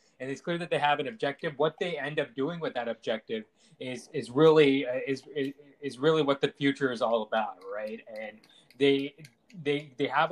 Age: 20-39